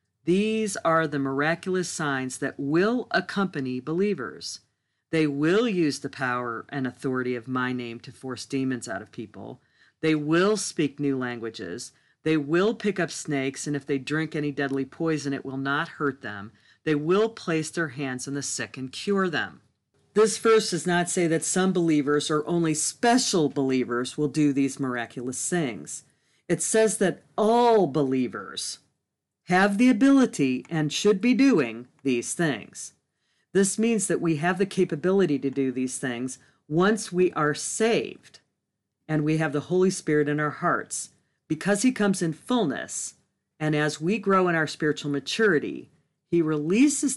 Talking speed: 165 wpm